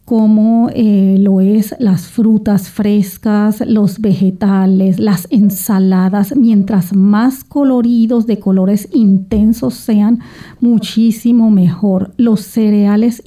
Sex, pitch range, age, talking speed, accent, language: female, 200-230 Hz, 40-59, 100 wpm, American, English